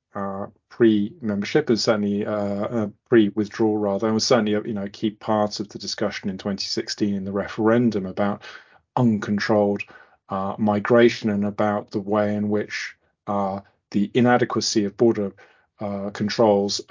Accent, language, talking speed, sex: British, English, 145 wpm, male